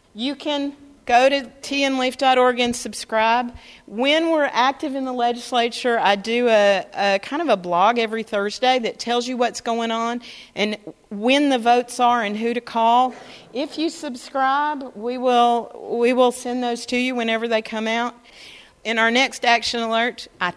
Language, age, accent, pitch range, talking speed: English, 40-59, American, 195-250 Hz, 170 wpm